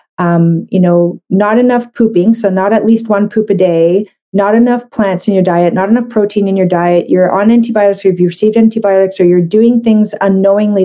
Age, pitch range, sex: 40-59, 185-225 Hz, female